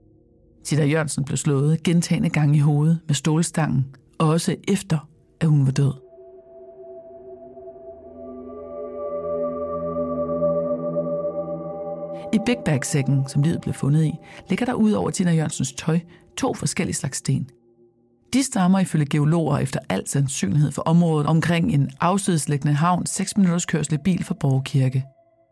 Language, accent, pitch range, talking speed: Danish, native, 140-185 Hz, 120 wpm